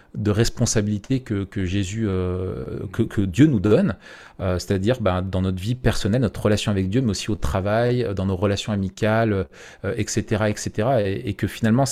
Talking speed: 185 wpm